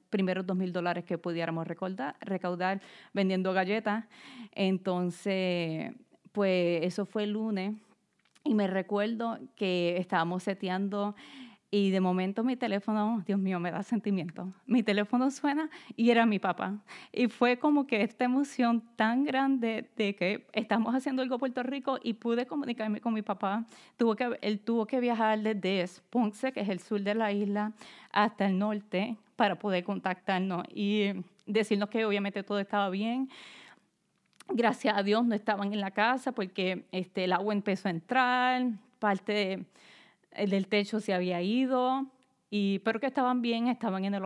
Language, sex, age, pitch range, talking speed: English, female, 30-49, 195-230 Hz, 160 wpm